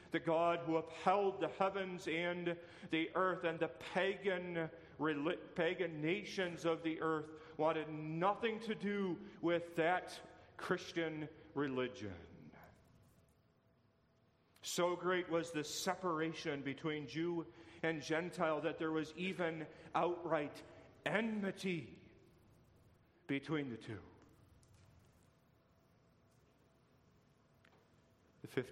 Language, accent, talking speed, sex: English, American, 90 wpm, male